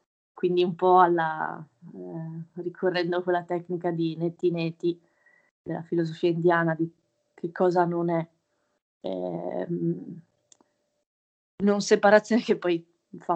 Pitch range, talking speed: 165-190 Hz, 115 wpm